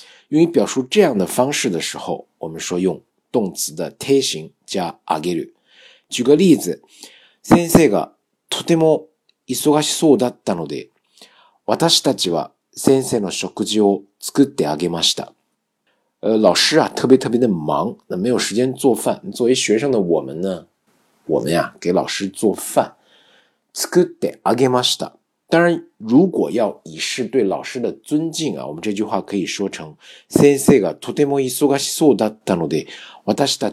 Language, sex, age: Chinese, male, 50-69